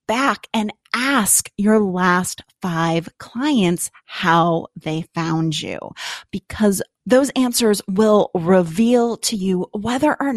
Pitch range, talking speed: 185-255 Hz, 115 wpm